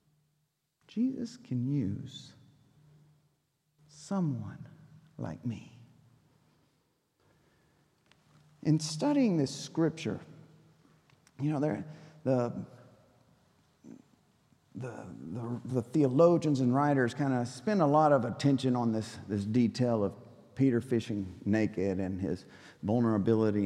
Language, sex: English, male